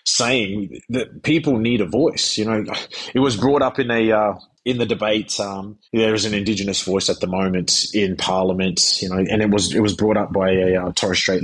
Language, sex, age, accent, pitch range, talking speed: English, male, 30-49, Australian, 105-135 Hz, 225 wpm